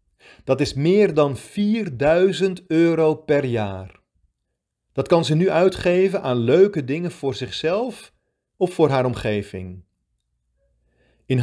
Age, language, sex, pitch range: 40-59, Dutch, male, 105-165 Hz